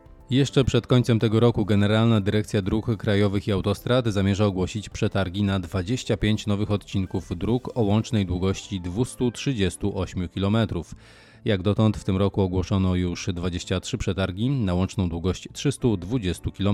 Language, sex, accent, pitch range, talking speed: Polish, male, native, 95-115 Hz, 135 wpm